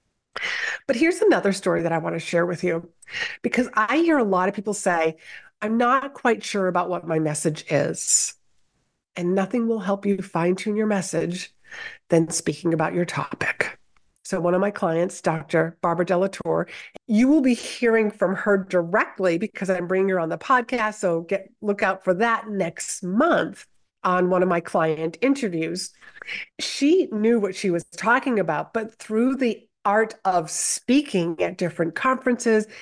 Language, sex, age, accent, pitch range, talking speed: English, female, 50-69, American, 175-230 Hz, 170 wpm